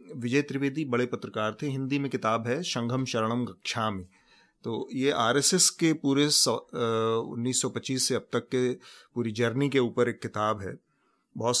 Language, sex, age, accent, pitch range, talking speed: Hindi, male, 30-49, native, 110-130 Hz, 155 wpm